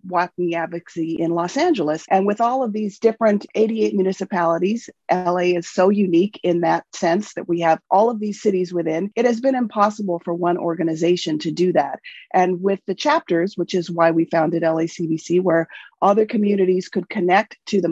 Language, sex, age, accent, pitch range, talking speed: English, female, 40-59, American, 175-215 Hz, 185 wpm